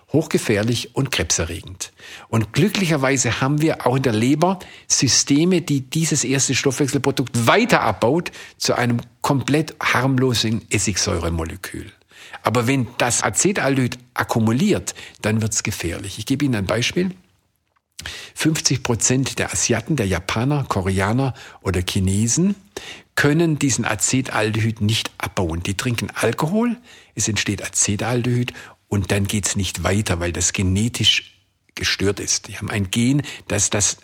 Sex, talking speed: male, 130 wpm